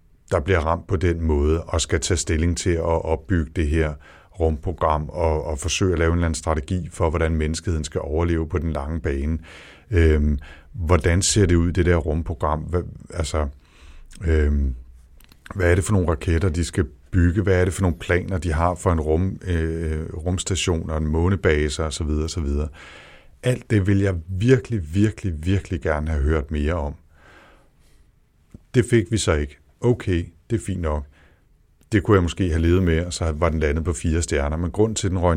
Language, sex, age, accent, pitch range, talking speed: Danish, male, 60-79, native, 80-95 Hz, 195 wpm